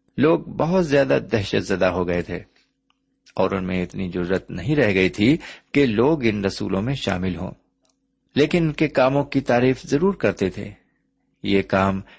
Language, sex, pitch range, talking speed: Urdu, male, 95-135 Hz, 170 wpm